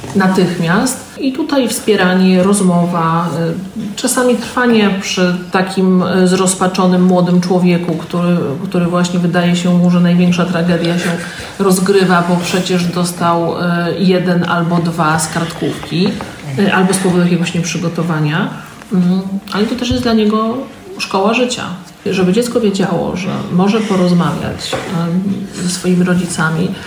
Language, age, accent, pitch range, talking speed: Polish, 40-59, native, 175-200 Hz, 115 wpm